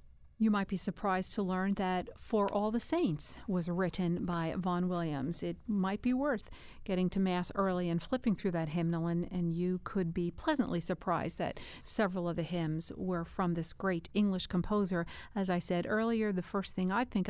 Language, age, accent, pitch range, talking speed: English, 50-69, American, 170-205 Hz, 195 wpm